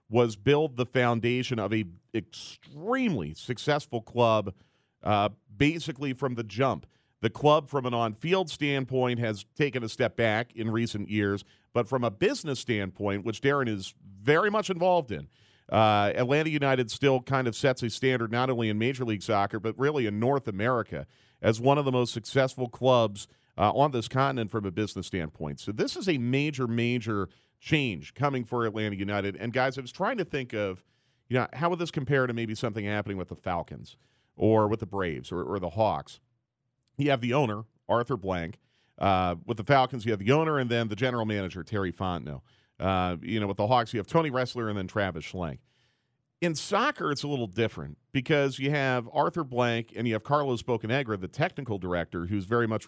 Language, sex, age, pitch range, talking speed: English, male, 40-59, 105-135 Hz, 195 wpm